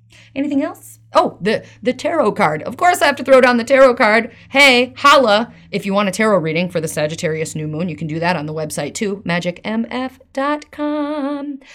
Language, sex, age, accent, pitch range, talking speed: English, female, 30-49, American, 170-240 Hz, 200 wpm